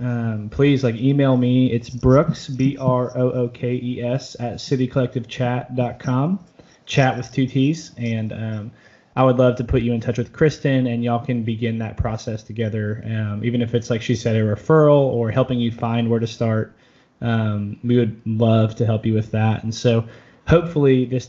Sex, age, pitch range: male, 20-39, 115-130 Hz